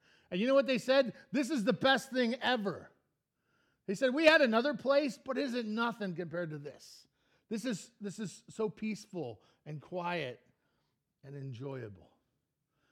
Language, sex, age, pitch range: English, male, 50-69, 155-235 Hz